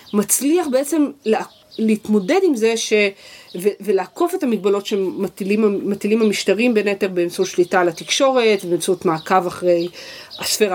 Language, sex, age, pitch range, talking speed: Hebrew, female, 40-59, 185-235 Hz, 130 wpm